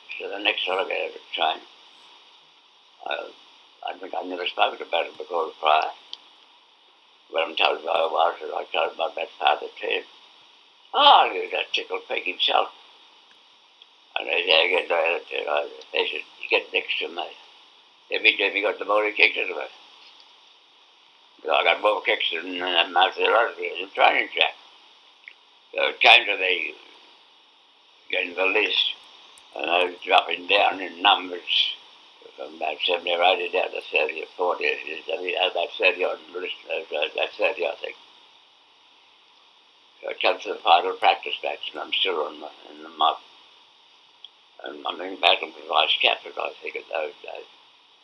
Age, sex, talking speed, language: 60-79, male, 180 wpm, English